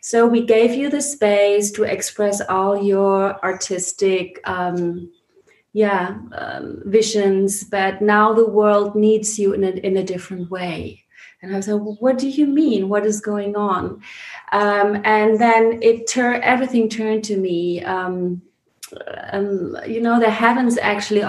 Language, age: English, 30-49